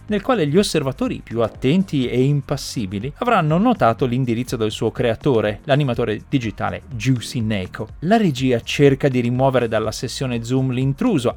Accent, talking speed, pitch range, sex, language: native, 145 wpm, 115-170 Hz, male, Italian